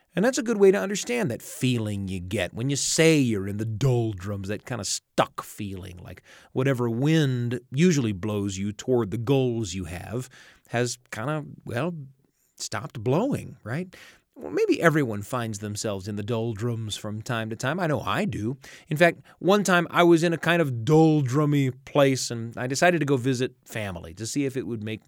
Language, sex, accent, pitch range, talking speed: English, male, American, 110-160 Hz, 195 wpm